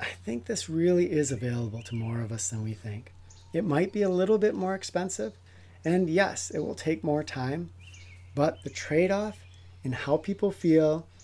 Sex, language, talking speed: male, English, 185 wpm